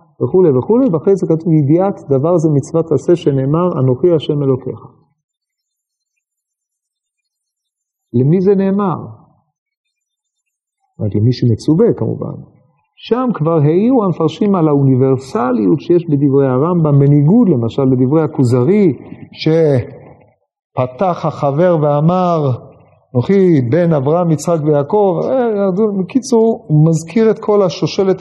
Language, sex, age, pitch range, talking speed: Hebrew, male, 50-69, 145-190 Hz, 100 wpm